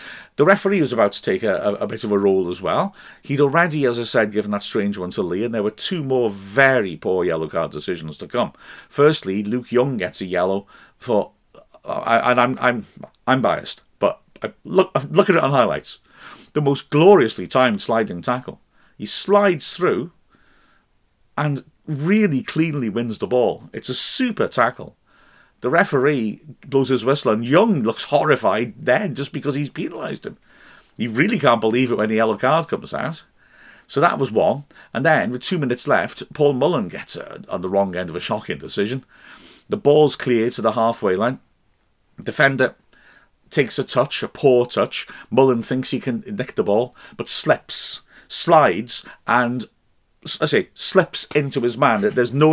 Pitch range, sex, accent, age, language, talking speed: 110-145 Hz, male, British, 50-69, English, 180 wpm